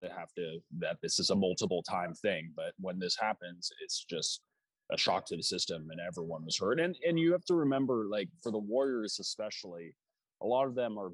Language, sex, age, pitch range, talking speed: English, male, 20-39, 95-155 Hz, 215 wpm